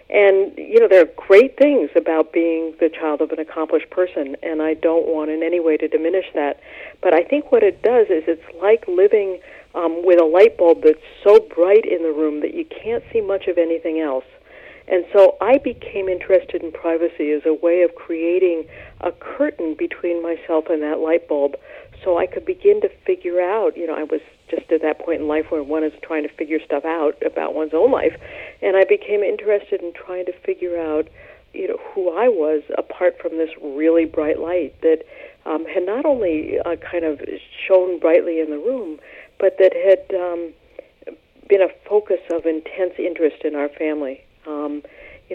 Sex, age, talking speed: female, 60-79, 200 wpm